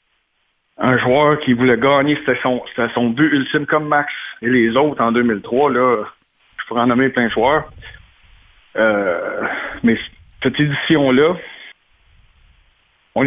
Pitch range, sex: 120-150 Hz, male